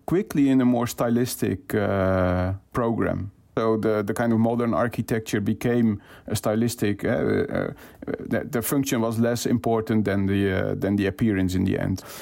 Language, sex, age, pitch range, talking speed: English, male, 40-59, 110-135 Hz, 165 wpm